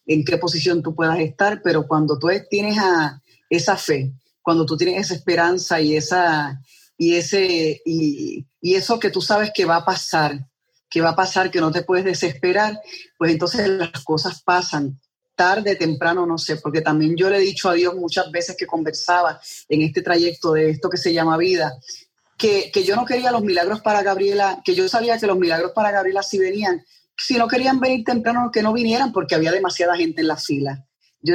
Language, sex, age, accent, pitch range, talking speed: Spanish, female, 20-39, American, 160-190 Hz, 205 wpm